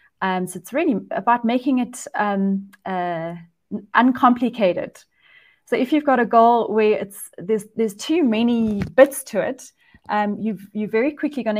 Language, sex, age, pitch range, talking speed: English, female, 30-49, 190-225 Hz, 160 wpm